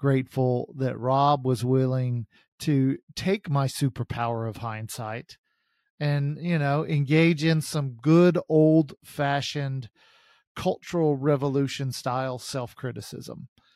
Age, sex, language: 40-59, male, English